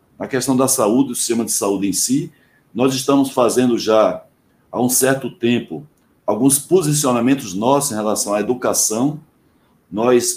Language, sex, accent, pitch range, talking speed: Portuguese, male, Brazilian, 115-140 Hz, 150 wpm